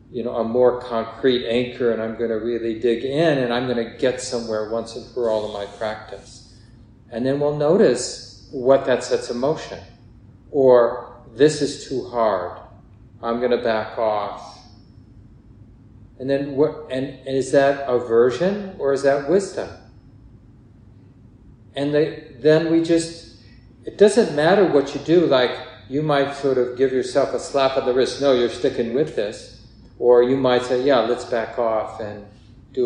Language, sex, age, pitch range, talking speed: English, male, 40-59, 115-145 Hz, 170 wpm